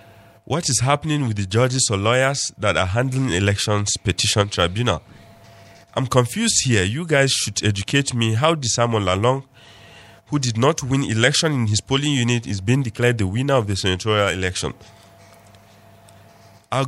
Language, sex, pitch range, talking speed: English, male, 95-125 Hz, 160 wpm